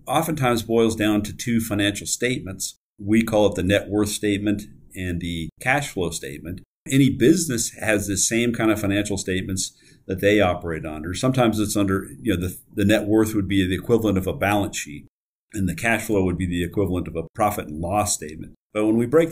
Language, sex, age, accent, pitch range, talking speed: English, male, 40-59, American, 95-115 Hz, 210 wpm